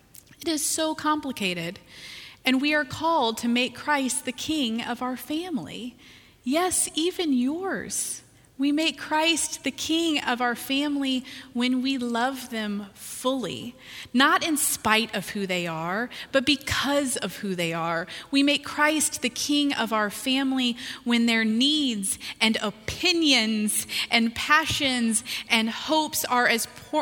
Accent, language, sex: American, English, female